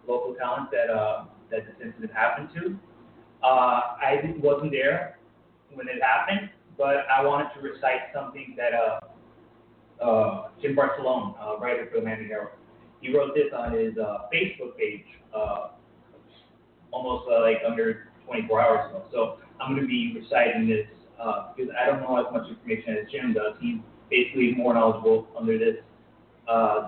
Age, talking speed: 30-49, 165 wpm